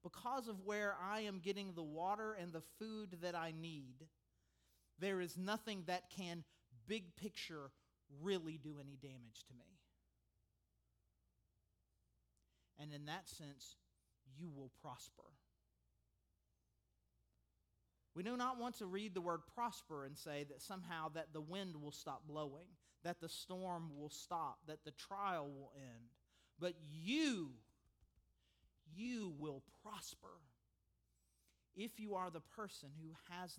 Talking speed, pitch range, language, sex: 135 wpm, 140-190 Hz, English, male